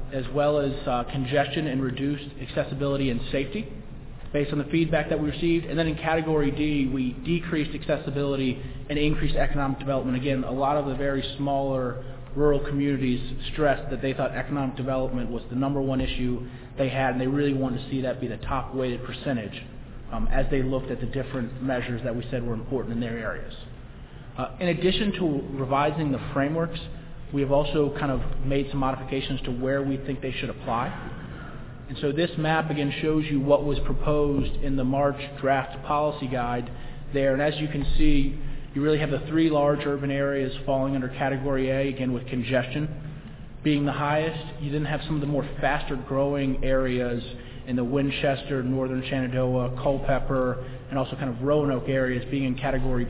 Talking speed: 185 wpm